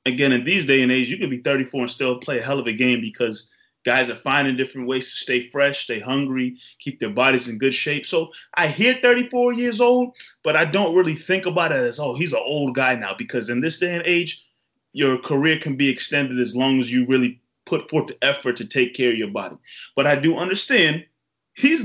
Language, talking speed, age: English, 235 wpm, 30-49